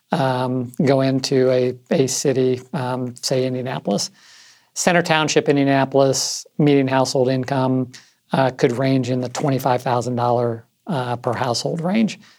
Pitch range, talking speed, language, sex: 125-140 Hz, 115 wpm, English, male